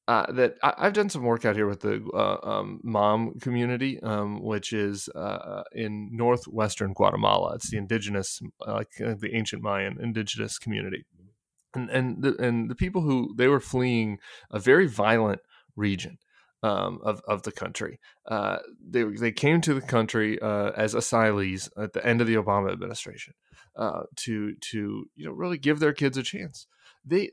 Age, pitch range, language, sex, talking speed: 30-49, 110-135 Hz, English, male, 180 wpm